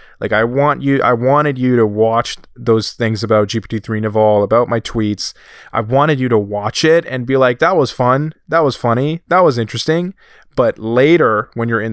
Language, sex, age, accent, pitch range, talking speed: English, male, 20-39, American, 105-135 Hz, 200 wpm